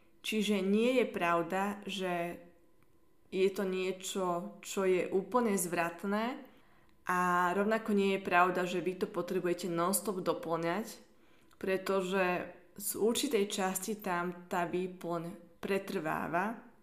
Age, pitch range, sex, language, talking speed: 20-39, 180-215 Hz, female, Slovak, 110 wpm